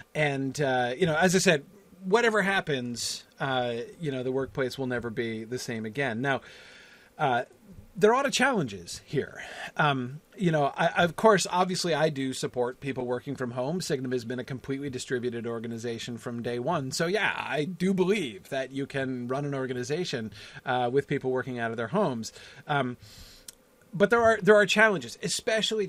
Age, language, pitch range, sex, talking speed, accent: 40-59, English, 125-180 Hz, male, 180 wpm, American